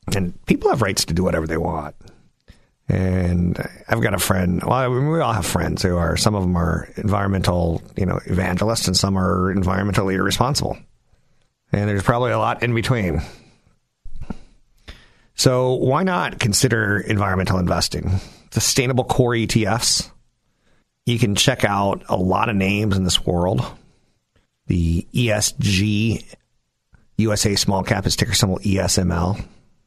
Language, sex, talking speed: English, male, 140 wpm